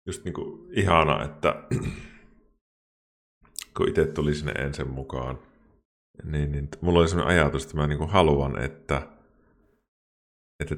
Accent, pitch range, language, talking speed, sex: native, 65-80 Hz, Finnish, 130 wpm, male